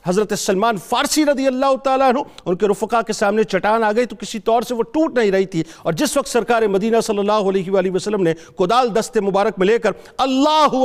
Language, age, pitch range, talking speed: Urdu, 50-69, 190-250 Hz, 225 wpm